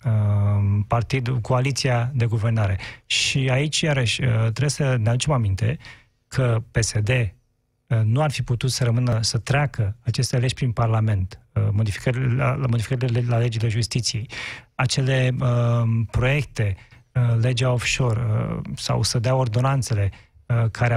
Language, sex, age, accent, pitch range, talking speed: Romanian, male, 30-49, native, 115-135 Hz, 115 wpm